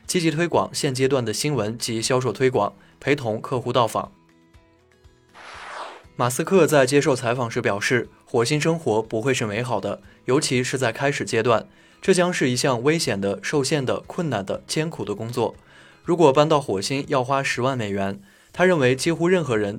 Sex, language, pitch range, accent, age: male, Chinese, 110-145 Hz, native, 20-39